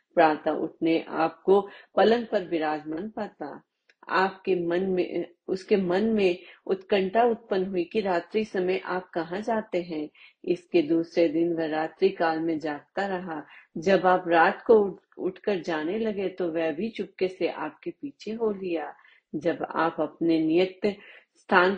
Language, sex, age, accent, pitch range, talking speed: Hindi, female, 40-59, native, 165-200 Hz, 145 wpm